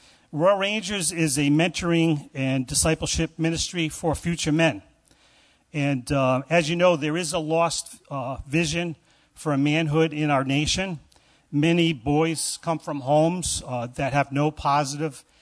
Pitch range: 130-160 Hz